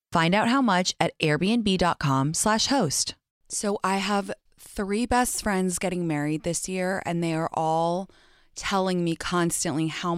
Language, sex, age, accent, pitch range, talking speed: English, female, 20-39, American, 165-220 Hz, 155 wpm